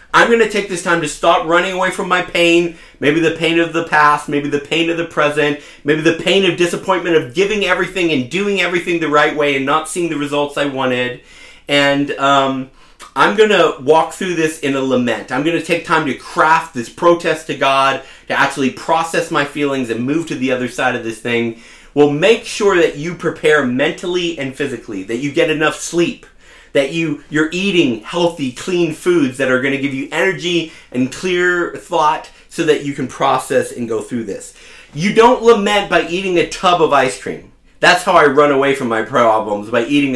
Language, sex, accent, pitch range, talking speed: English, male, American, 130-170 Hz, 210 wpm